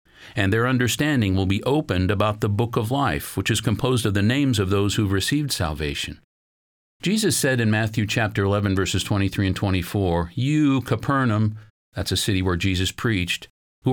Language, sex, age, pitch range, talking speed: English, male, 50-69, 90-120 Hz, 175 wpm